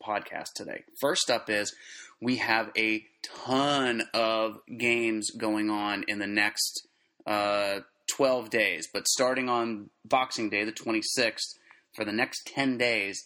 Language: English